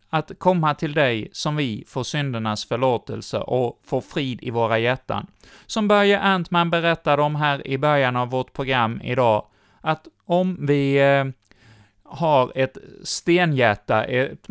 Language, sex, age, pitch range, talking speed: Swedish, male, 30-49, 120-165 Hz, 145 wpm